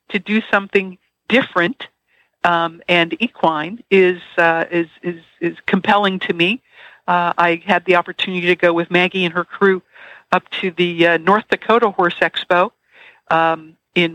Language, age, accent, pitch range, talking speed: English, 60-79, American, 175-205 Hz, 155 wpm